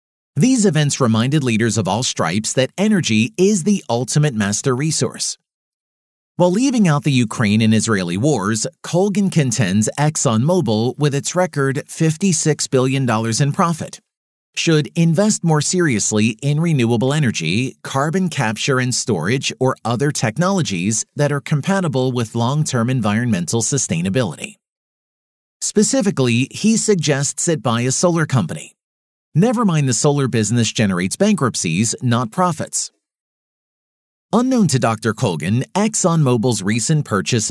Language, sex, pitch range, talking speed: English, male, 115-170 Hz, 125 wpm